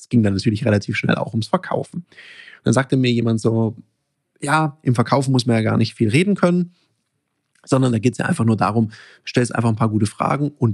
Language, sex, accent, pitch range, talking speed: German, male, German, 110-135 Hz, 230 wpm